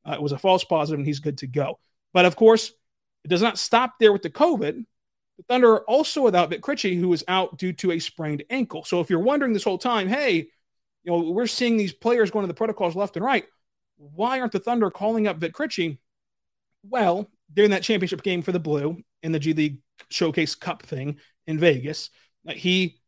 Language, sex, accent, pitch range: English, male, American, 160-215 Hz